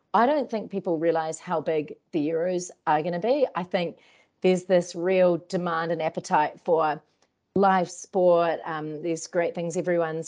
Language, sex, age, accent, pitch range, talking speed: English, female, 40-59, Australian, 160-180 Hz, 170 wpm